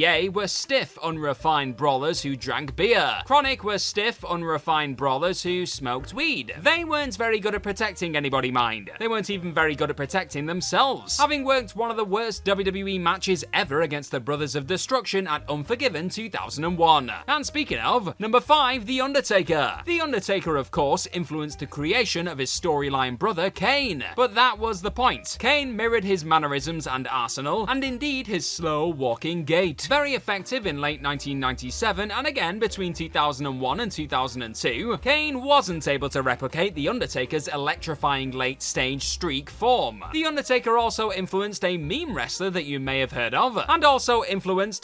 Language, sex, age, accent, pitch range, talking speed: English, male, 20-39, British, 145-235 Hz, 165 wpm